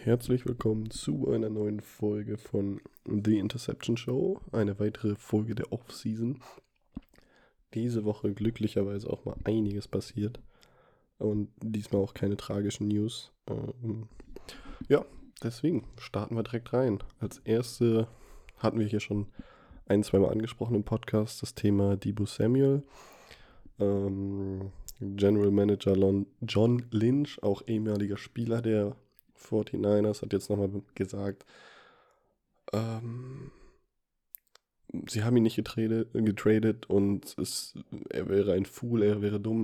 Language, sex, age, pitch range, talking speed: German, male, 20-39, 100-115 Hz, 120 wpm